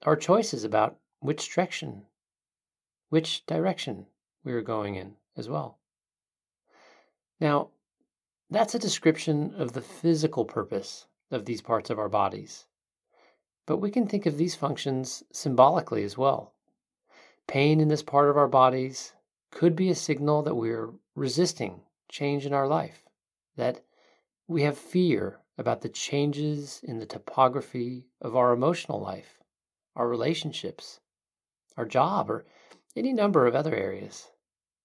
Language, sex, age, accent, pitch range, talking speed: English, male, 40-59, American, 120-160 Hz, 135 wpm